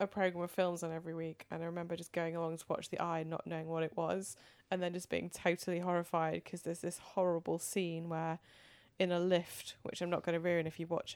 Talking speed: 255 wpm